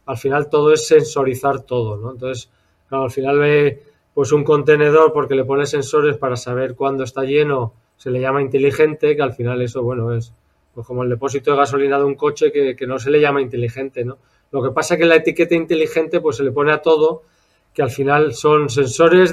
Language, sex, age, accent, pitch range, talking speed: Spanish, male, 20-39, Spanish, 135-160 Hz, 215 wpm